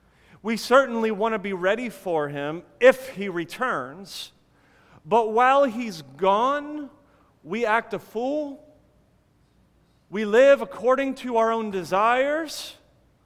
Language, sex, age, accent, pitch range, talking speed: English, male, 40-59, American, 180-235 Hz, 120 wpm